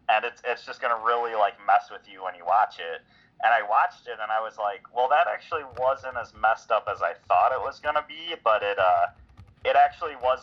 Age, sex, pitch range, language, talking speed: 30-49, male, 100-130 Hz, English, 255 wpm